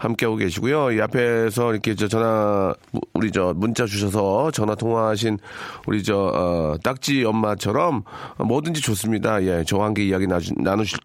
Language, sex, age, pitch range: Korean, male, 40-59, 100-140 Hz